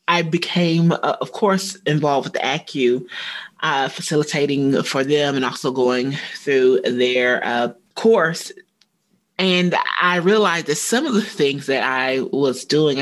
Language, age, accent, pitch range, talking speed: English, 30-49, American, 135-180 Hz, 145 wpm